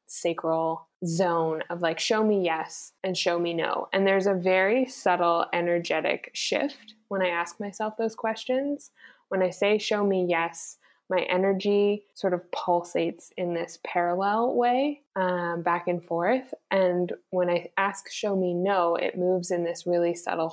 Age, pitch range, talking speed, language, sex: 20-39, 175-200 Hz, 165 wpm, English, female